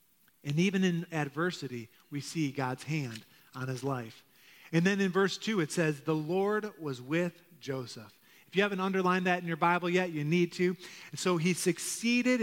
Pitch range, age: 150-195 Hz, 40-59